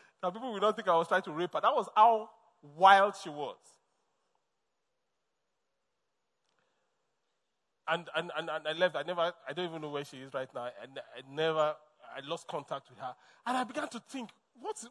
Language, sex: English, male